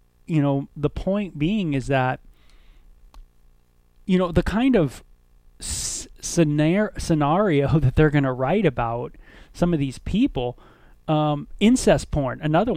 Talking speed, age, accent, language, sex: 130 wpm, 30-49, American, English, male